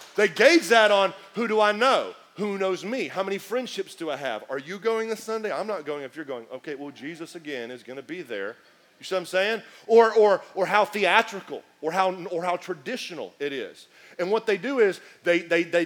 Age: 40-59